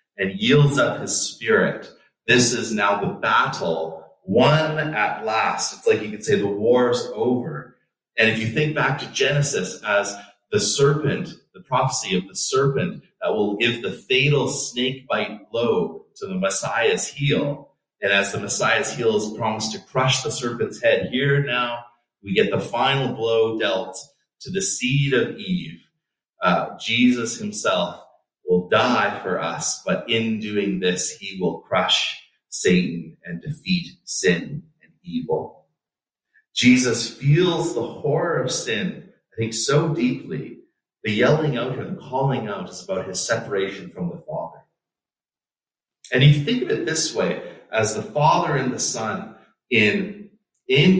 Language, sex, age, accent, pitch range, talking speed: English, male, 30-49, American, 115-160 Hz, 155 wpm